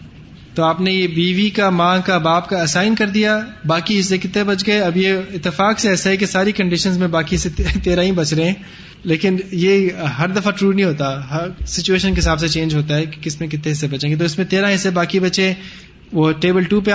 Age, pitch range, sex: 20-39, 165-190 Hz, male